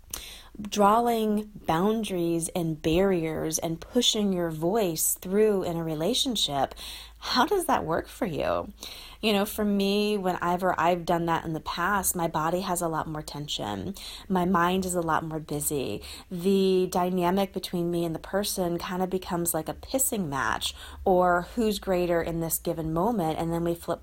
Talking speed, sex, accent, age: 170 wpm, female, American, 30-49